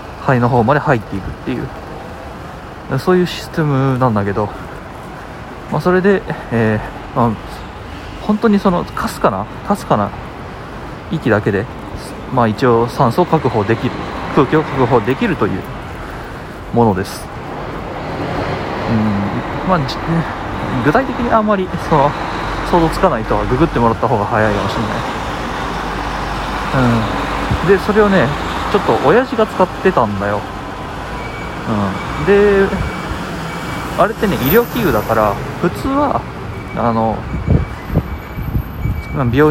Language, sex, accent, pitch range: Japanese, male, native, 105-165 Hz